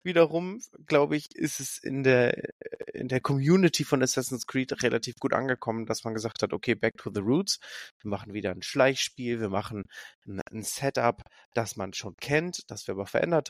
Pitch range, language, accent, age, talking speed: 115-145 Hz, German, German, 30-49, 185 wpm